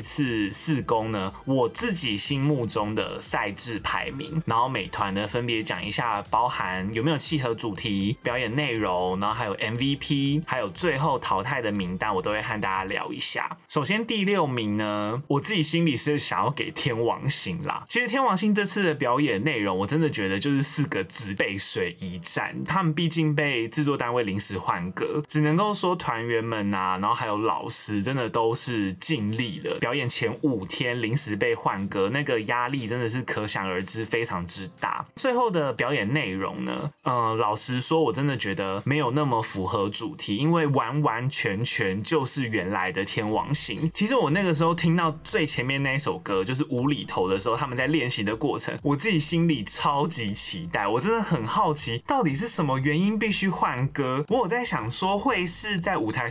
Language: Chinese